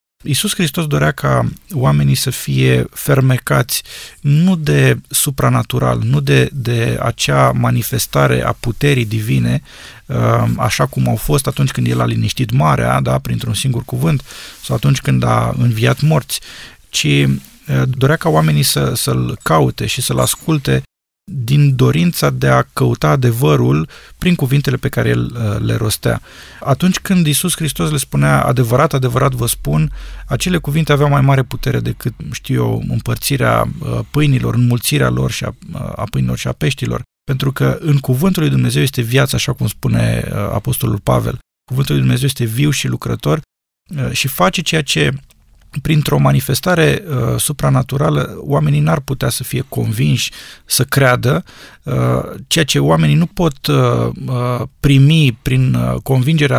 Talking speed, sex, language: 140 wpm, male, Romanian